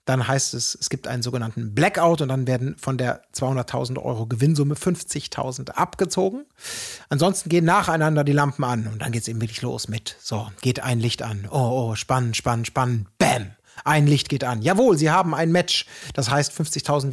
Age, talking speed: 30-49, 185 wpm